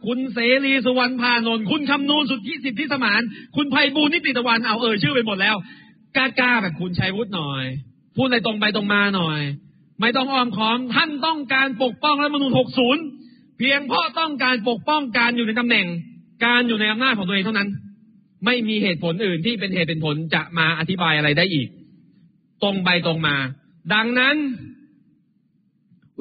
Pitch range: 165-240 Hz